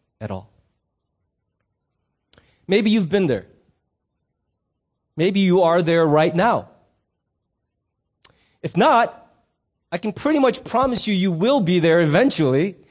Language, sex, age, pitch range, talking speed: English, male, 30-49, 165-230 Hz, 115 wpm